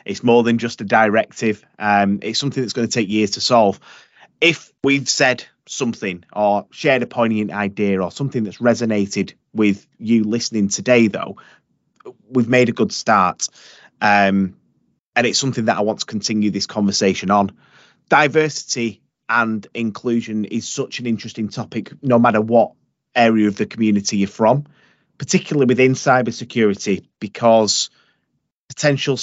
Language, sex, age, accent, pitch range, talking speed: English, male, 30-49, British, 105-130 Hz, 150 wpm